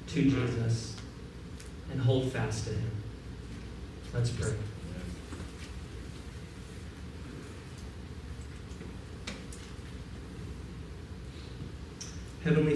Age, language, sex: 40-59, English, male